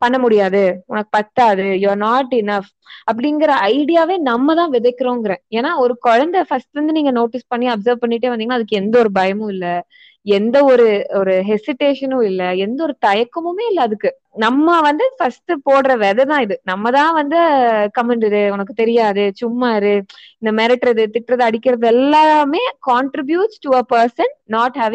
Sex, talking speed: female, 140 wpm